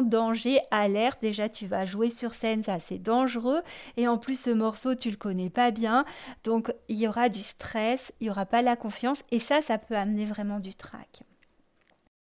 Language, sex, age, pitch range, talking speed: French, female, 30-49, 210-250 Hz, 200 wpm